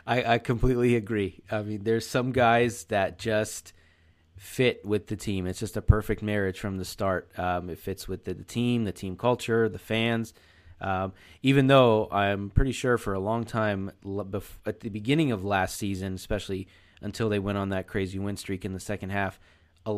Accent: American